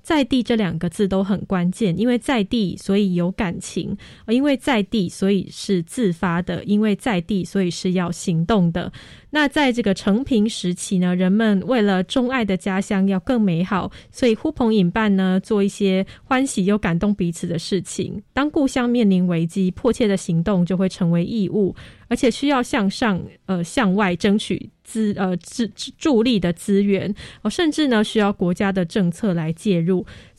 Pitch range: 185-230 Hz